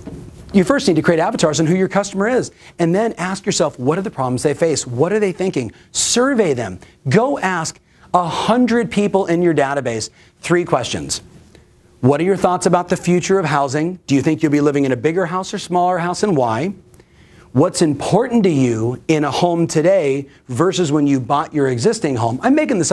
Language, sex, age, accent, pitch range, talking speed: English, male, 40-59, American, 140-195 Hz, 205 wpm